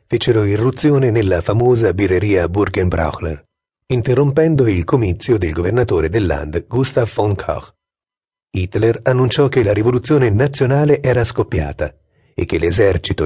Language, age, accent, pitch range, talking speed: Italian, 40-59, native, 85-125 Hz, 120 wpm